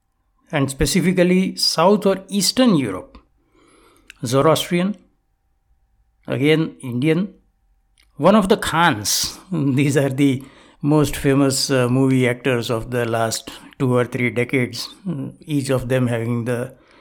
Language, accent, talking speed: English, Indian, 115 wpm